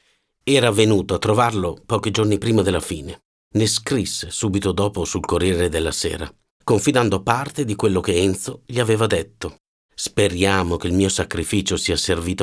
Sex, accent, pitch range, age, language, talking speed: male, native, 90-120 Hz, 50-69, Italian, 160 wpm